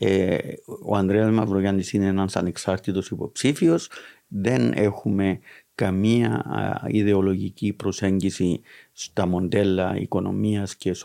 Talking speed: 90 wpm